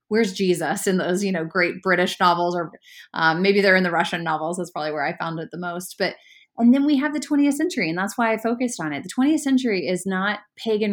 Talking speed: 255 wpm